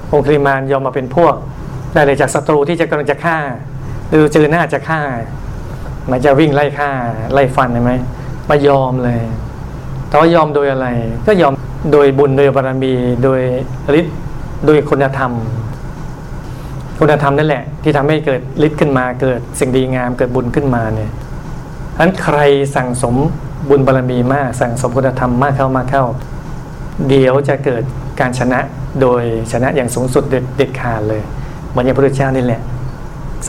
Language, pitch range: Thai, 125-145 Hz